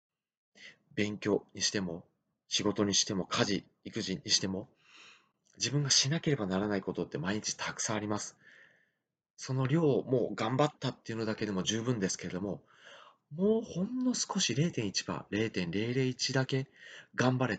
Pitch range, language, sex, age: 105-145 Hz, Japanese, male, 30-49